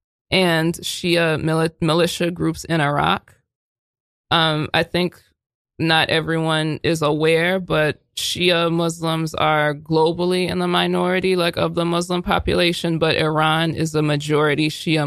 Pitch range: 150-170 Hz